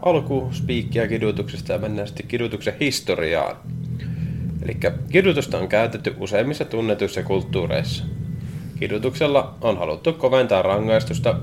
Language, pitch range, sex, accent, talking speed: Finnish, 100-135 Hz, male, native, 100 wpm